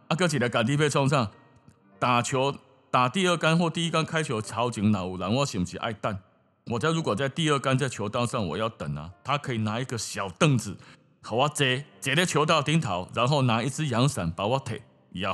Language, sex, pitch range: Chinese, male, 110-150 Hz